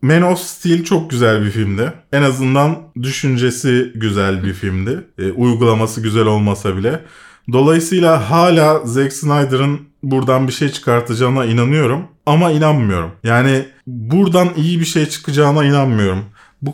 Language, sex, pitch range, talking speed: Turkish, male, 110-160 Hz, 135 wpm